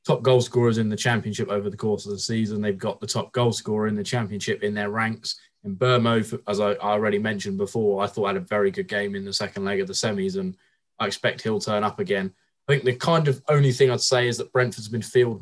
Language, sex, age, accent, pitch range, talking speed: English, male, 20-39, British, 100-125 Hz, 255 wpm